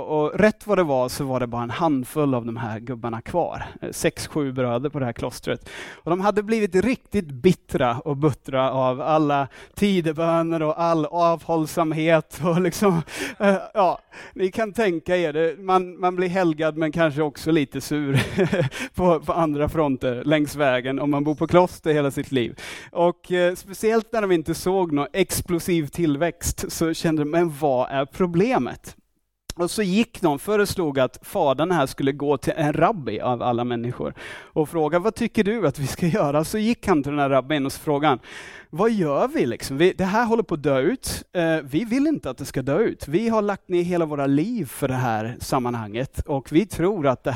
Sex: male